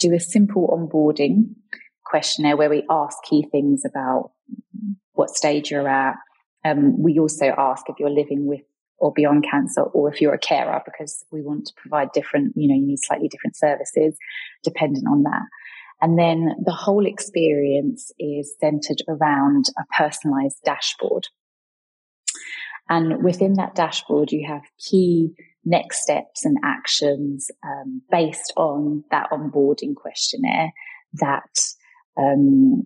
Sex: female